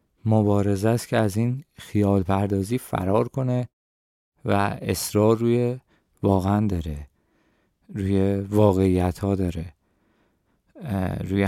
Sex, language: male, Persian